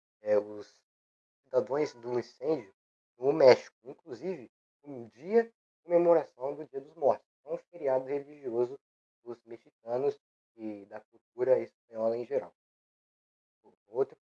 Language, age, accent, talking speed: Portuguese, 20-39, Brazilian, 115 wpm